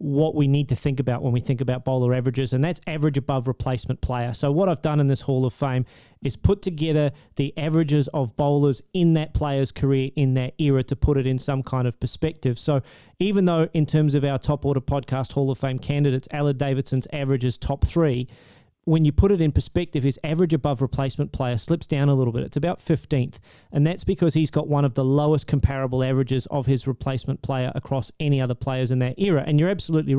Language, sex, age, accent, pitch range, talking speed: English, male, 30-49, Australian, 130-150 Hz, 225 wpm